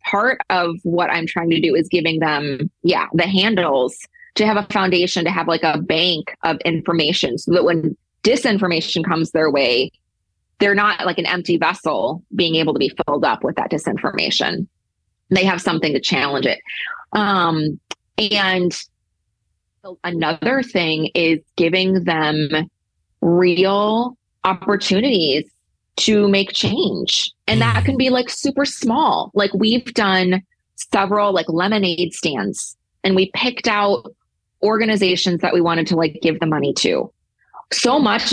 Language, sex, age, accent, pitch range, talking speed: English, female, 20-39, American, 160-195 Hz, 145 wpm